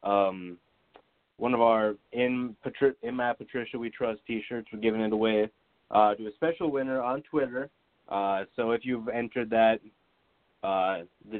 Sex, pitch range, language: male, 105-120 Hz, English